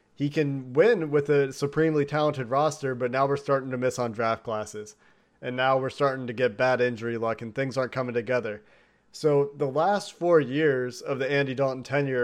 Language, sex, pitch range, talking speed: English, male, 125-145 Hz, 200 wpm